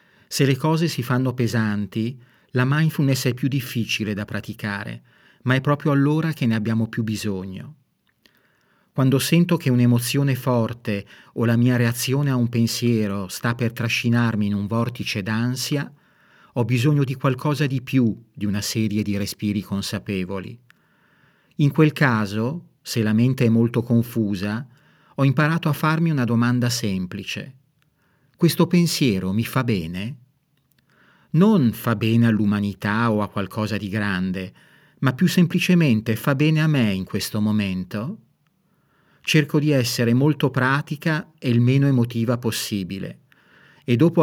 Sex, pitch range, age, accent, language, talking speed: male, 110-145 Hz, 40-59, native, Italian, 140 wpm